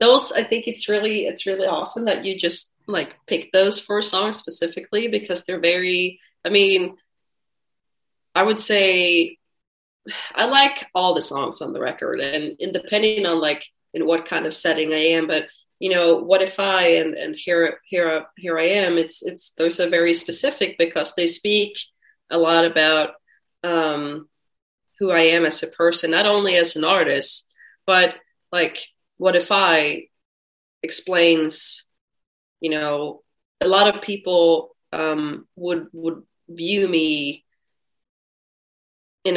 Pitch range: 165-205 Hz